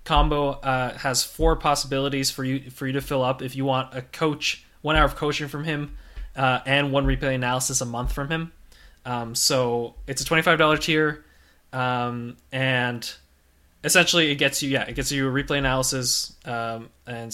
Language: English